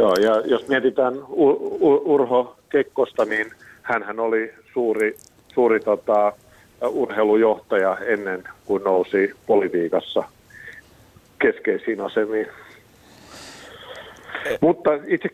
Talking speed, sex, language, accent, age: 80 wpm, male, Finnish, native, 50-69